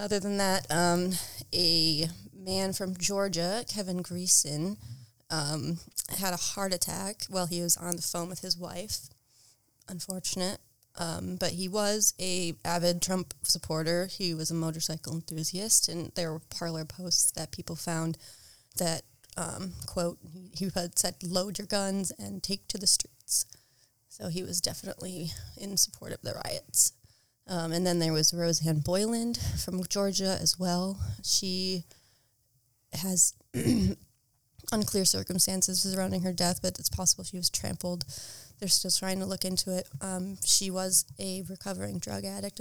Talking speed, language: 150 wpm, English